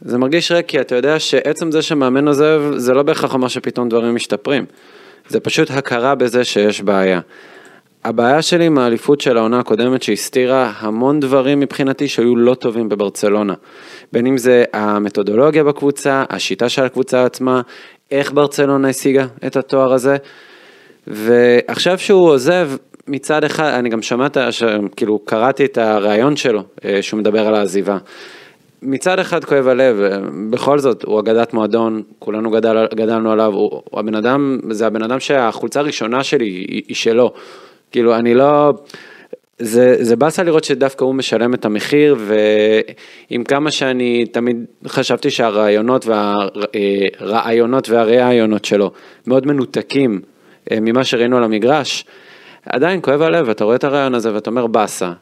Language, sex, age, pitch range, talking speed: Hebrew, male, 20-39, 110-140 Hz, 145 wpm